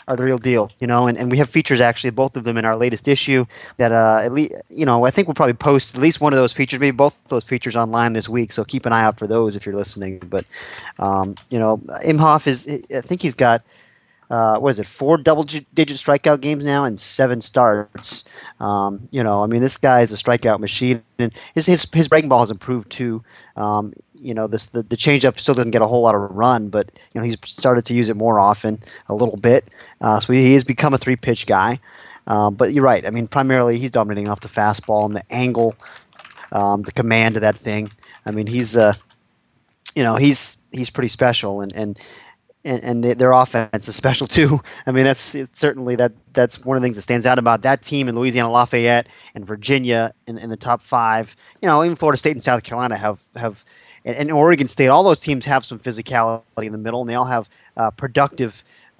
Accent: American